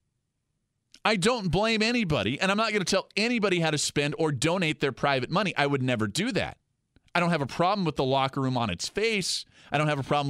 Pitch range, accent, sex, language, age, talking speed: 130-195 Hz, American, male, English, 40-59, 240 wpm